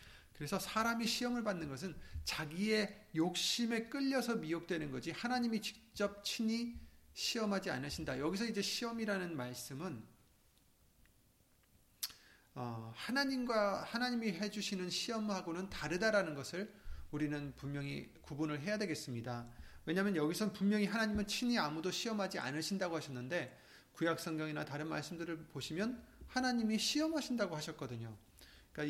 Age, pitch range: 30-49, 140-205 Hz